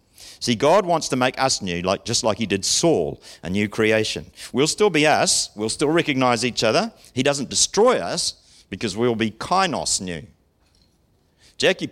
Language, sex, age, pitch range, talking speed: English, male, 50-69, 105-175 Hz, 175 wpm